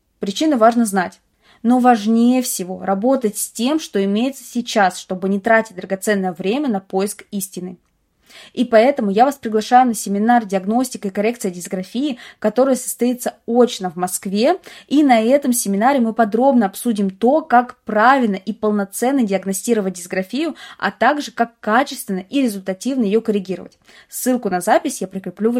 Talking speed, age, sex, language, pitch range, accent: 150 wpm, 20-39, female, Russian, 195-250 Hz, native